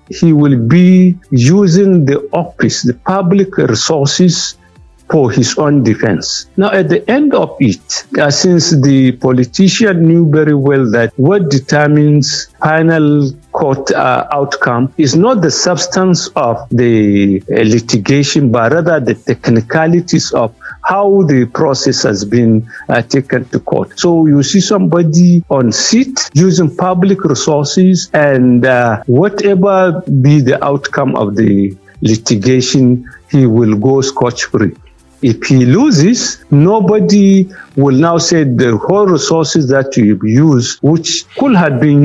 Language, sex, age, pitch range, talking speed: English, male, 60-79, 120-170 Hz, 135 wpm